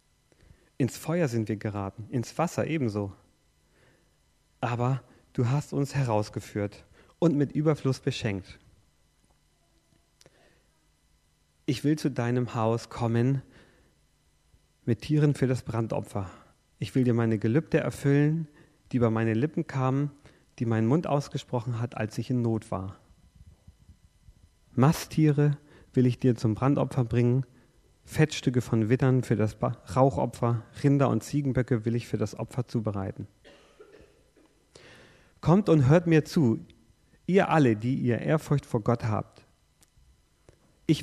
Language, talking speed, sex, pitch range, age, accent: English, 125 wpm, male, 110-145 Hz, 40-59, German